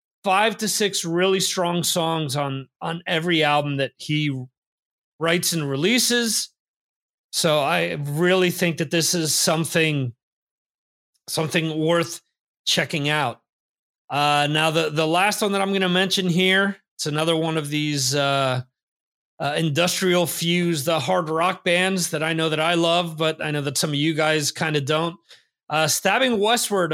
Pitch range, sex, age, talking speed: 155-185 Hz, male, 30-49, 160 wpm